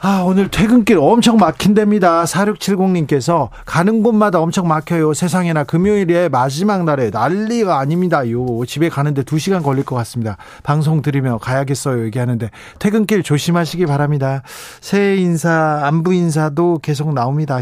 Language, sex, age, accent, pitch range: Korean, male, 40-59, native, 130-170 Hz